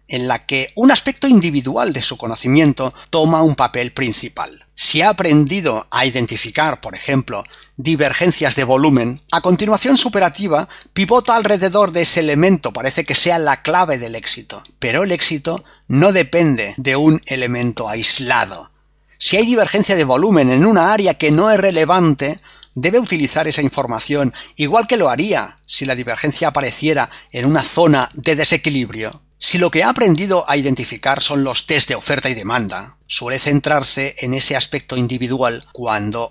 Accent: Spanish